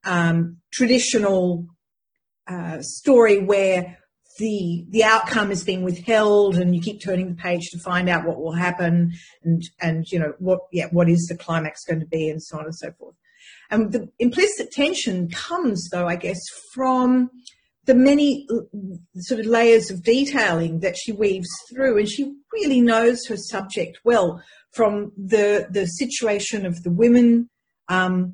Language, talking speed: English, 165 wpm